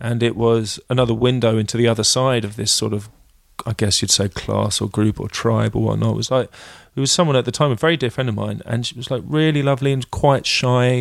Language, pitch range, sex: English, 110-135 Hz, male